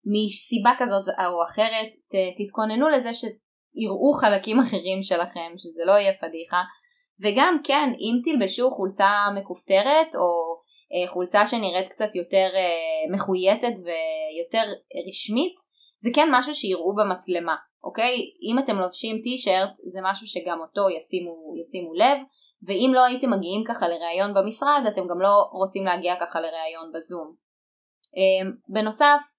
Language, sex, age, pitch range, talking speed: Hebrew, female, 20-39, 185-225 Hz, 125 wpm